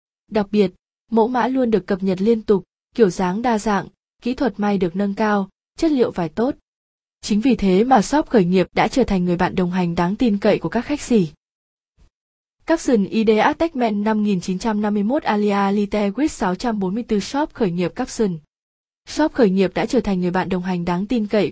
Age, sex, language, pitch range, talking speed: 20-39, female, Vietnamese, 190-235 Hz, 200 wpm